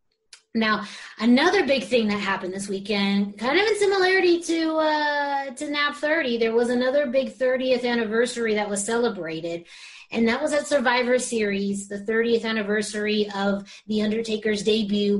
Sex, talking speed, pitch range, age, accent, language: female, 155 wpm, 205-255 Hz, 30-49, American, English